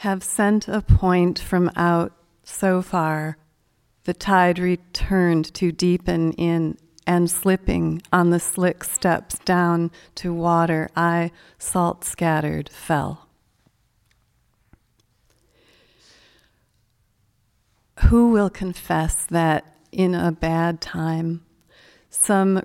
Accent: American